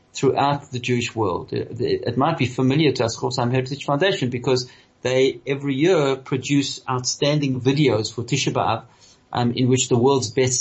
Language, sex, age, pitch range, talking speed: English, male, 40-59, 120-140 Hz, 170 wpm